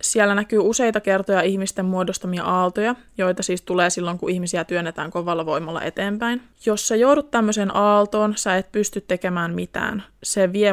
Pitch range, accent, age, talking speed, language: 180-215 Hz, native, 20-39, 160 wpm, Finnish